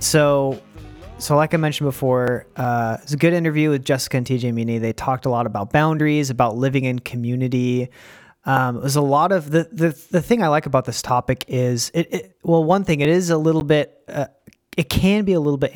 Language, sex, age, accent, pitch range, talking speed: English, male, 30-49, American, 120-150 Hz, 225 wpm